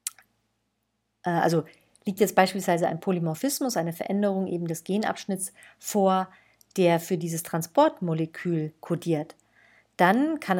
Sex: female